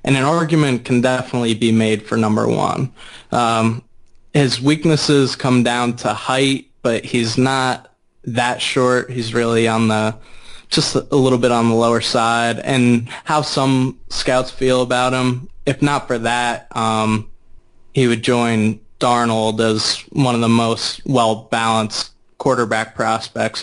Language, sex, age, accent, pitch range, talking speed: English, male, 20-39, American, 115-125 Hz, 140 wpm